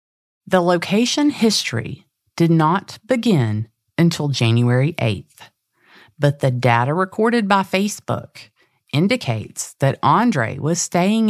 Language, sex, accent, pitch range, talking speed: English, female, American, 120-185 Hz, 105 wpm